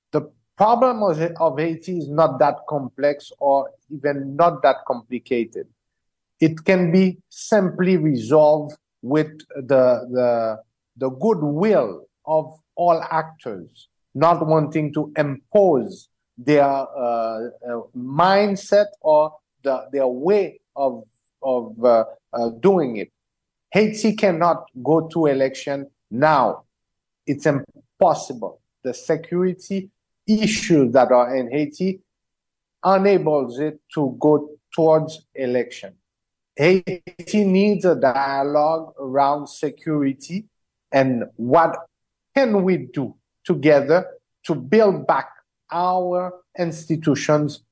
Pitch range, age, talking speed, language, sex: 135-180 Hz, 50-69, 105 wpm, English, male